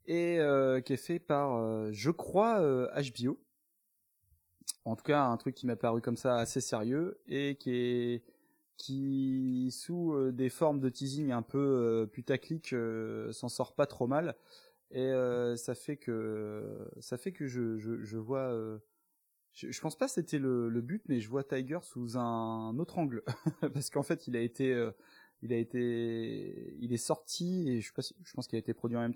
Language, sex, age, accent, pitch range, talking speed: French, male, 20-39, French, 115-140 Hz, 195 wpm